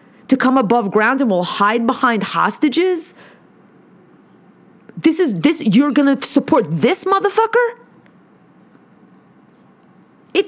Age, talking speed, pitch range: 30-49, 105 wpm, 205-285 Hz